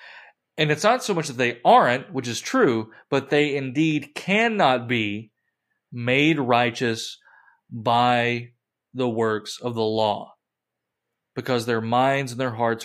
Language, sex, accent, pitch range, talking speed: English, male, American, 120-155 Hz, 140 wpm